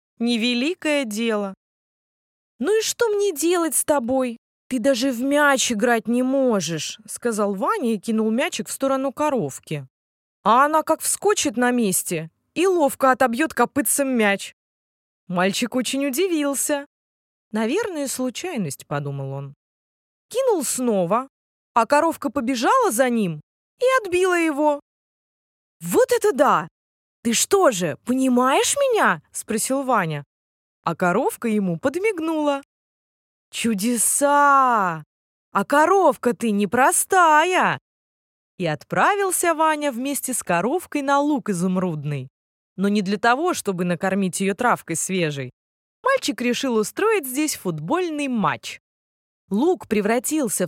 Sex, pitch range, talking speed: female, 195-290 Hz, 115 wpm